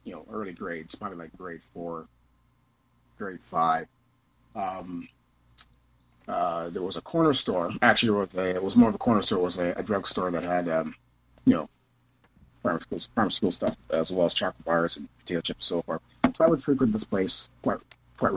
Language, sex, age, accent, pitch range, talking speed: English, male, 30-49, American, 90-130 Hz, 195 wpm